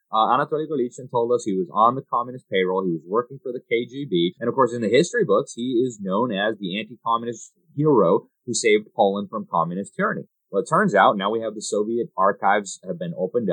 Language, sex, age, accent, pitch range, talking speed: English, male, 30-49, American, 90-125 Hz, 220 wpm